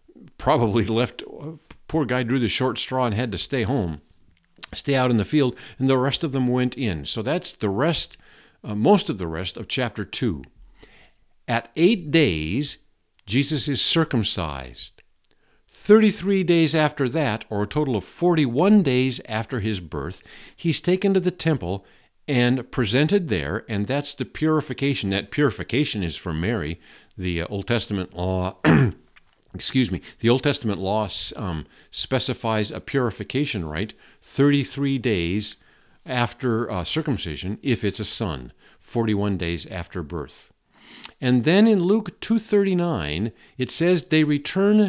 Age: 50-69